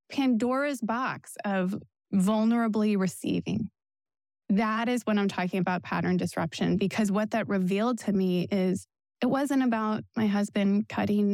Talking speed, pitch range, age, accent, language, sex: 140 wpm, 195-230 Hz, 20-39, American, English, female